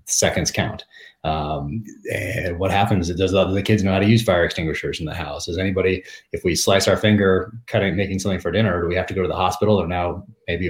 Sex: male